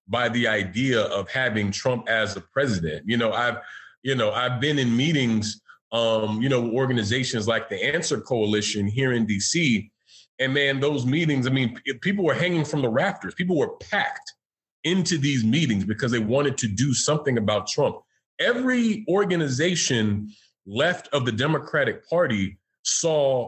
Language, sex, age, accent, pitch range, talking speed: English, male, 30-49, American, 115-165 Hz, 165 wpm